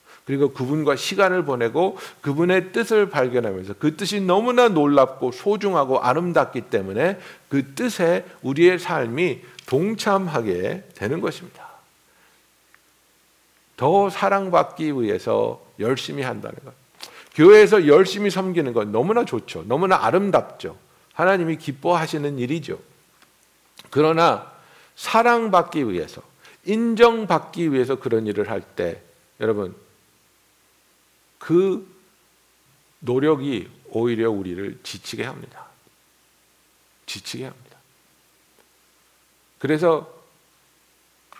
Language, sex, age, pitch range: Korean, male, 60-79, 130-195 Hz